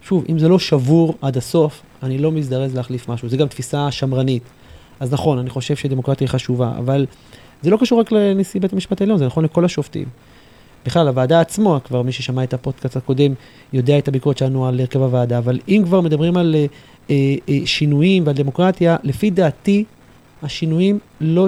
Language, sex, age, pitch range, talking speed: Hebrew, male, 30-49, 130-170 Hz, 185 wpm